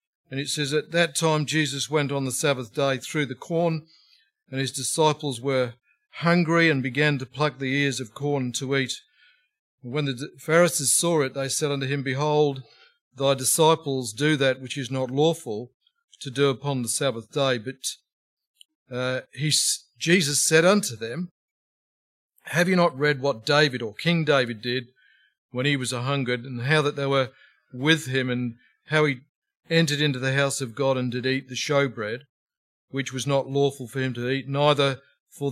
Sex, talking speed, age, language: male, 180 wpm, 50-69, English